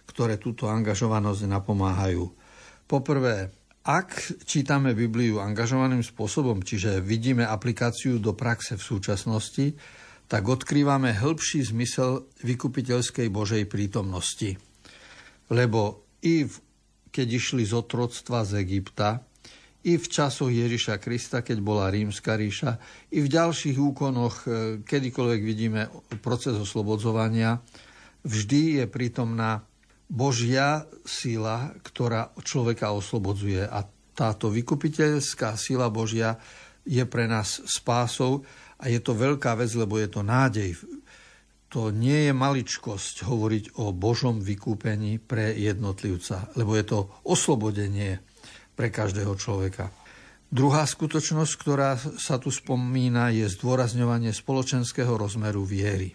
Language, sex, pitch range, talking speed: Slovak, male, 105-130 Hz, 110 wpm